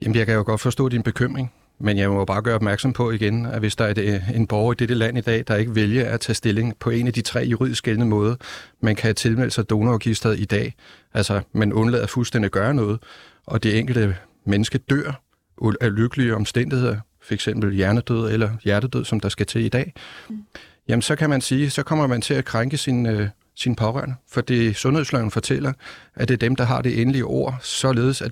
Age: 30-49